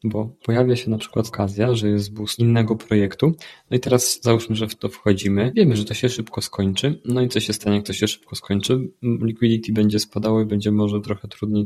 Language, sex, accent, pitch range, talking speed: Polish, male, native, 105-120 Hz, 220 wpm